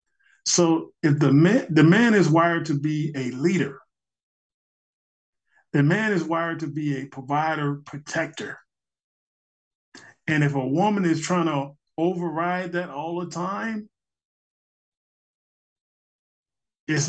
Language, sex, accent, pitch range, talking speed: English, male, American, 135-180 Hz, 115 wpm